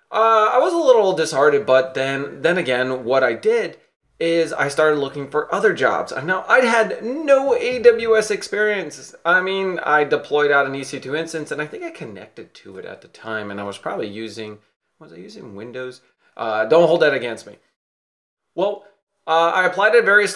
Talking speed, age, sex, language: 190 wpm, 30-49, male, English